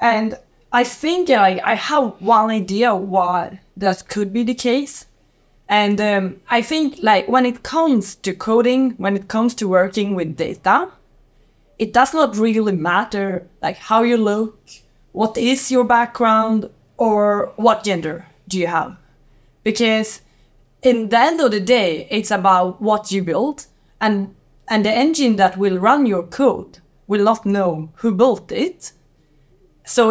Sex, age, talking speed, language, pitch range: female, 20-39, 155 wpm, English, 190-240 Hz